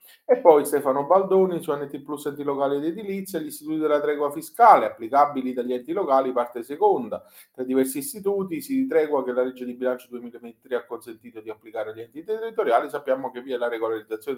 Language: Italian